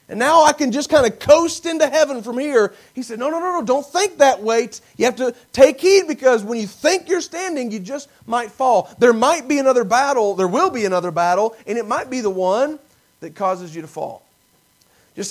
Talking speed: 230 wpm